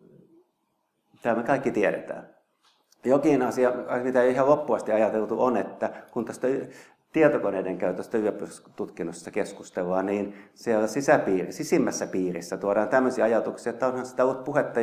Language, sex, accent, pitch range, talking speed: Finnish, male, native, 100-140 Hz, 130 wpm